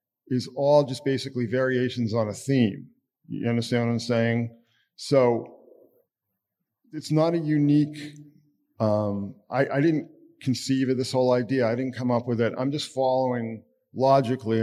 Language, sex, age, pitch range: English, male, 40-59, 110-130 Hz